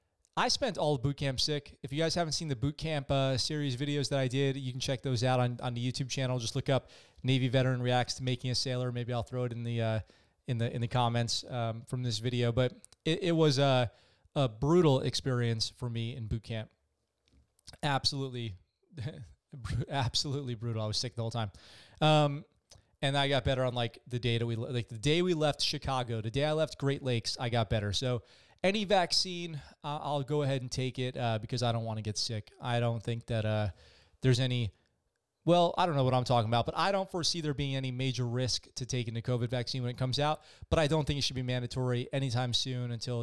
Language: English